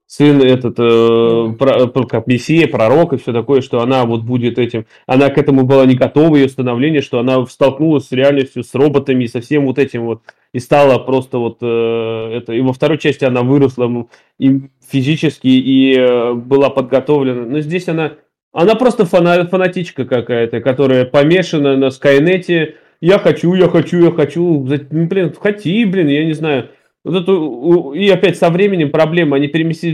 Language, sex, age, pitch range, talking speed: Russian, male, 20-39, 135-185 Hz, 170 wpm